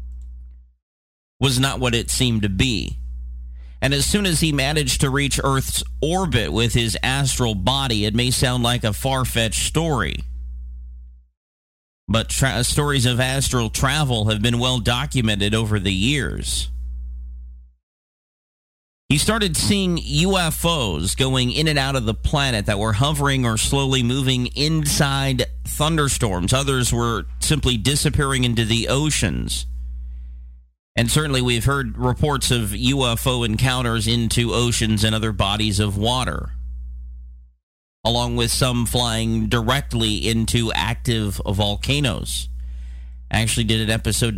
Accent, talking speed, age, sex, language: American, 125 wpm, 40-59, male, English